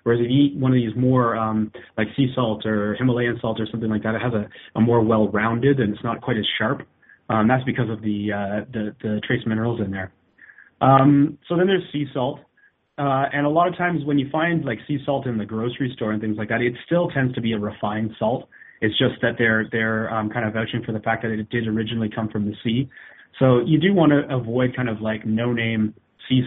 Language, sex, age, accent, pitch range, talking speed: English, male, 30-49, American, 110-130 Hz, 245 wpm